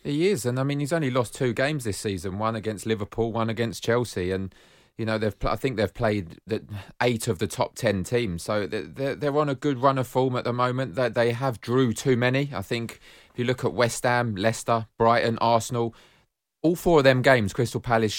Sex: male